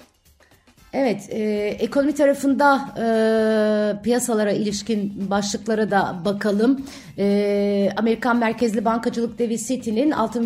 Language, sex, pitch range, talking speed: Turkish, female, 205-240 Hz, 100 wpm